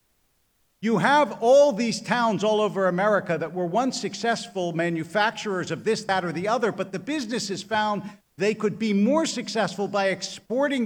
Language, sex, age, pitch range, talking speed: English, male, 50-69, 165-225 Hz, 165 wpm